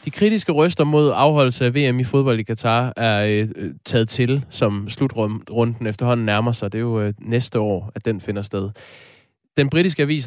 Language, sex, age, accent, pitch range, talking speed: Danish, male, 20-39, native, 105-130 Hz, 195 wpm